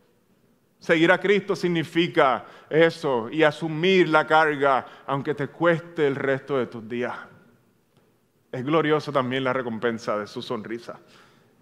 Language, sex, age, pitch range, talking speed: Spanish, male, 30-49, 125-165 Hz, 130 wpm